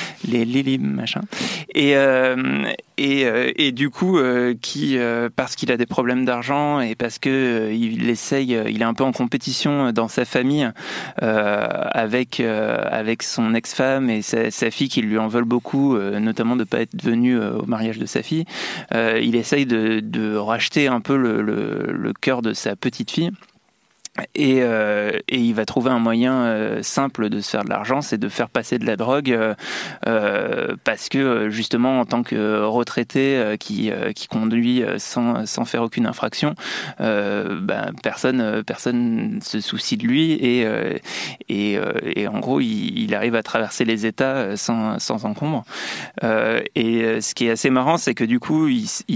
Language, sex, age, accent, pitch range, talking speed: French, male, 20-39, French, 110-135 Hz, 185 wpm